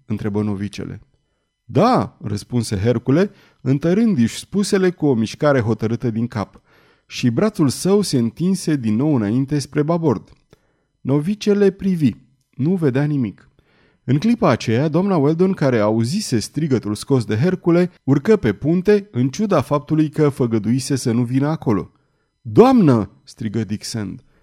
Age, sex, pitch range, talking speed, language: 30-49, male, 115-165 Hz, 135 wpm, Romanian